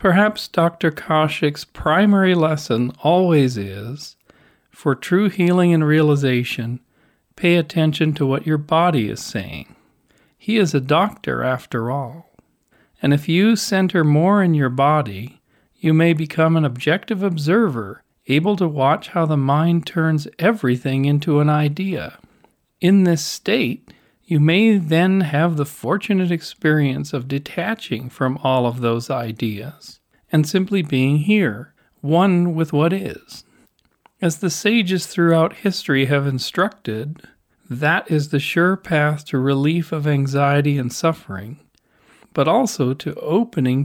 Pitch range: 140-180 Hz